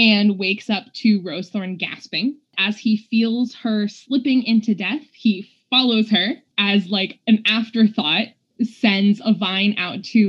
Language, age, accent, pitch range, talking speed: English, 20-39, American, 195-235 Hz, 145 wpm